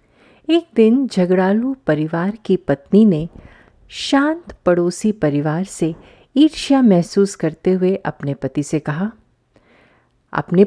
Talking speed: 110 wpm